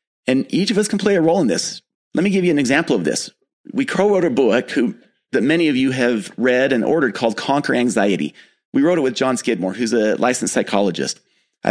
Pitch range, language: 115-155 Hz, English